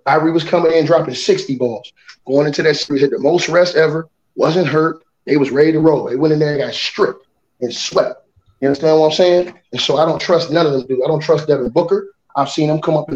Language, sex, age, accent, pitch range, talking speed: English, male, 30-49, American, 145-175 Hz, 260 wpm